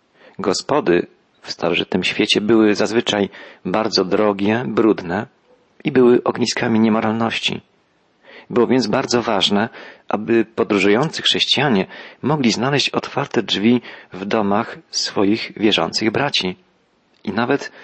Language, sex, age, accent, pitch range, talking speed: Polish, male, 40-59, native, 100-120 Hz, 105 wpm